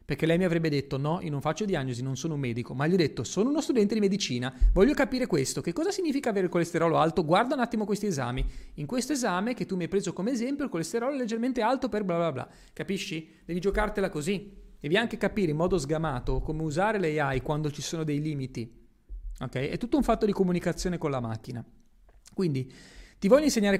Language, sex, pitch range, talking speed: Italian, male, 140-200 Hz, 225 wpm